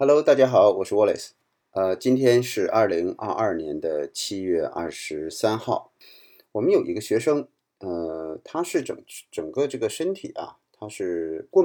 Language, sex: Chinese, male